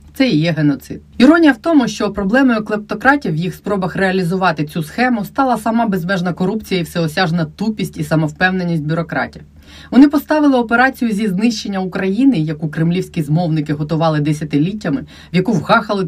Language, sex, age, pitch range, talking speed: Ukrainian, female, 30-49, 160-215 Hz, 150 wpm